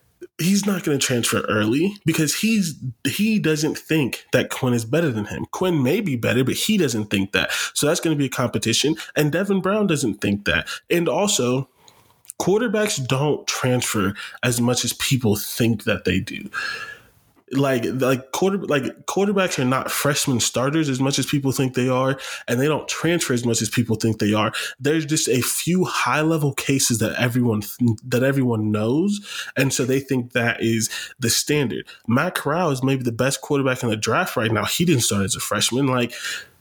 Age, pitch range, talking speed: 20-39, 115-150 Hz, 190 wpm